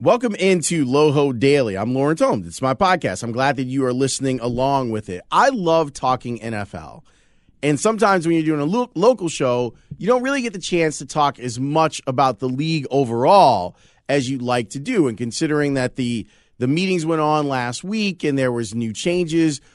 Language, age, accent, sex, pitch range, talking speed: English, 30-49, American, male, 125-160 Hz, 200 wpm